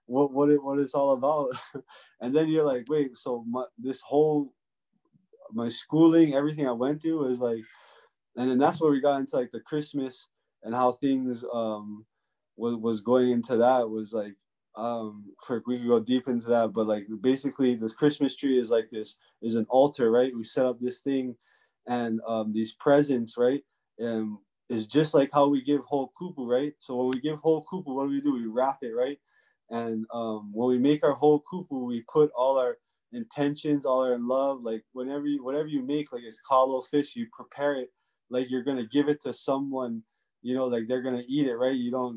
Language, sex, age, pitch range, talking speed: English, male, 20-39, 120-145 Hz, 210 wpm